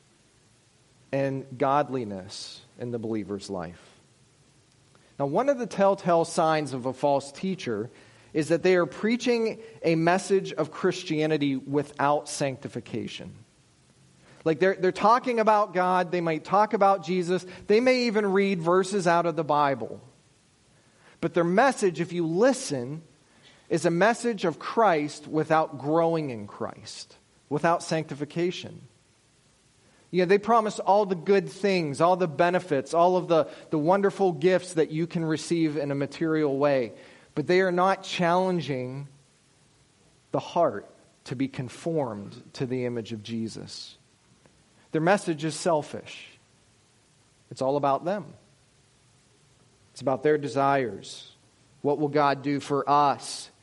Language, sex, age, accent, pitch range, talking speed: English, male, 40-59, American, 130-180 Hz, 135 wpm